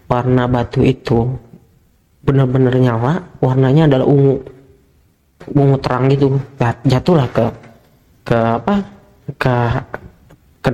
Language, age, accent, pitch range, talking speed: Indonesian, 20-39, native, 130-165 Hz, 95 wpm